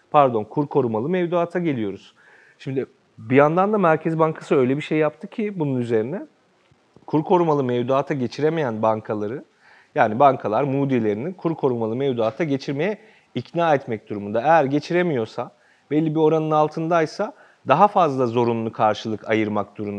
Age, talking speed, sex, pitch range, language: 40-59, 130 wpm, male, 115-160 Hz, Turkish